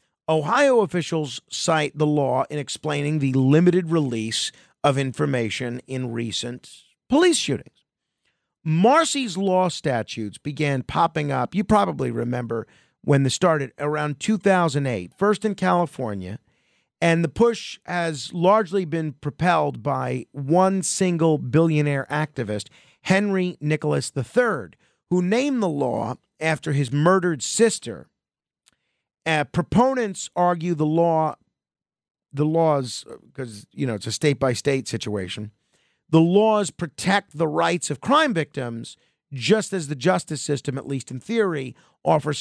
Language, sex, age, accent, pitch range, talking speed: English, male, 40-59, American, 135-180 Hz, 125 wpm